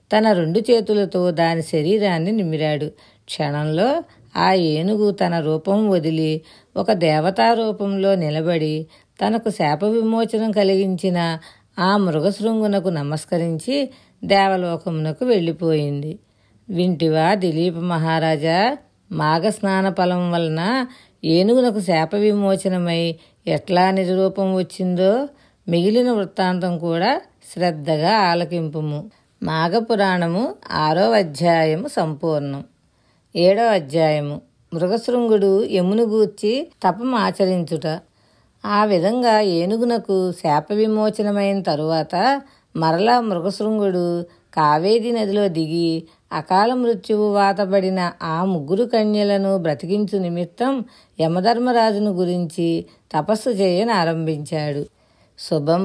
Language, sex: Telugu, female